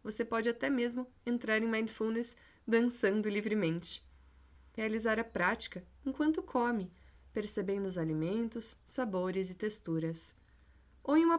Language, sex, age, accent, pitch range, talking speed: Portuguese, female, 20-39, Brazilian, 190-255 Hz, 120 wpm